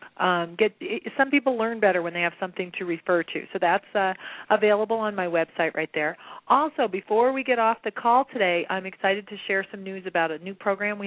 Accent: American